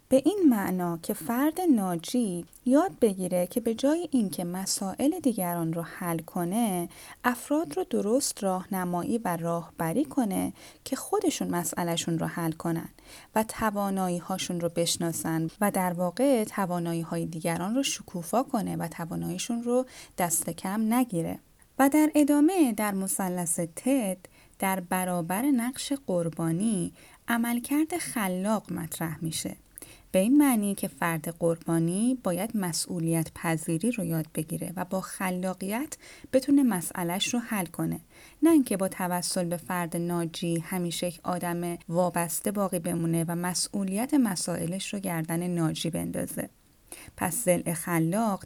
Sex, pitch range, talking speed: female, 170-235 Hz, 130 wpm